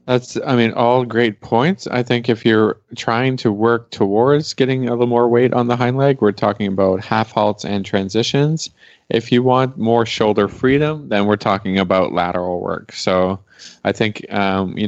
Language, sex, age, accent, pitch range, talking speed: English, male, 20-39, American, 95-120 Hz, 190 wpm